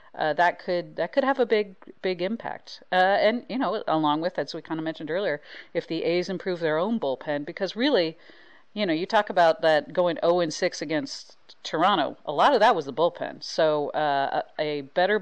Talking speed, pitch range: 205 wpm, 145-190 Hz